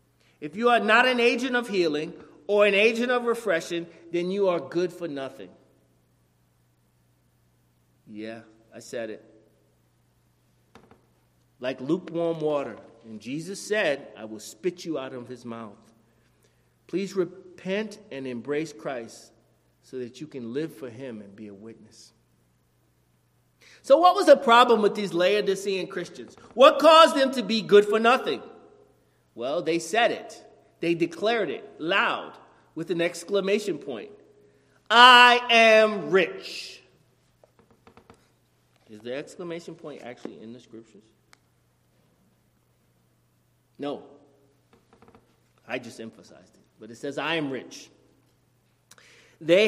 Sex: male